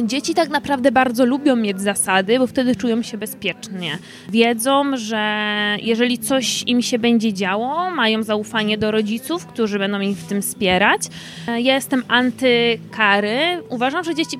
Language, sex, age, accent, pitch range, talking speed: Polish, female, 20-39, native, 230-300 Hz, 150 wpm